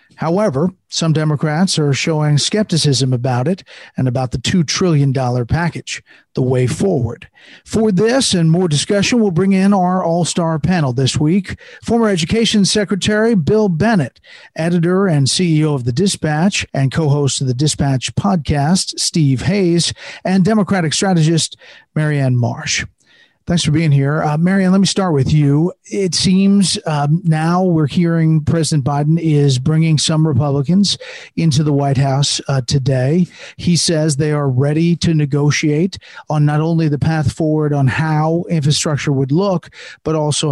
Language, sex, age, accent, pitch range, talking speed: English, male, 50-69, American, 140-180 Hz, 155 wpm